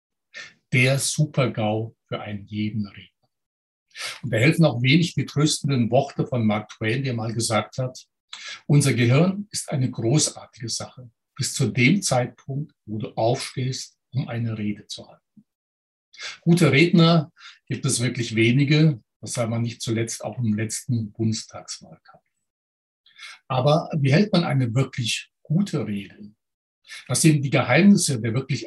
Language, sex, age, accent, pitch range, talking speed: German, male, 60-79, German, 115-150 Hz, 140 wpm